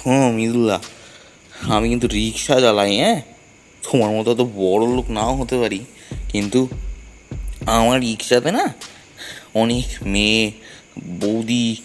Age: 20-39